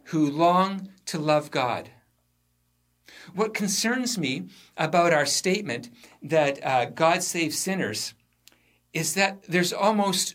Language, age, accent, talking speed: English, 50-69, American, 115 wpm